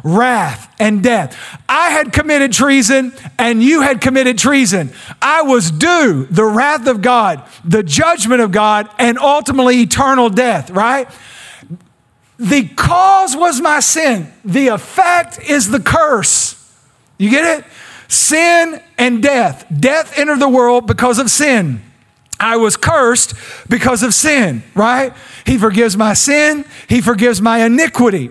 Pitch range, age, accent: 190-280 Hz, 40-59, American